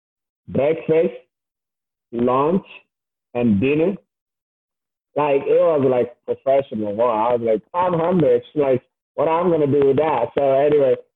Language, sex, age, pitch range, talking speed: English, male, 50-69, 130-165 Hz, 135 wpm